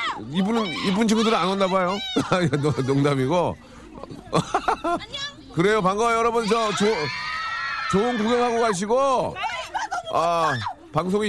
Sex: male